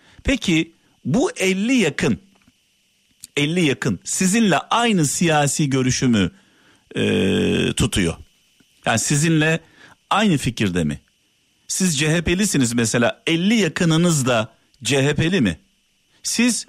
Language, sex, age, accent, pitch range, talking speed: Turkish, male, 50-69, native, 135-185 Hz, 95 wpm